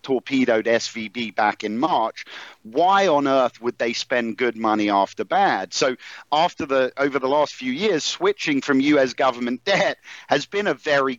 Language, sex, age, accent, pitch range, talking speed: English, male, 50-69, British, 115-155 Hz, 170 wpm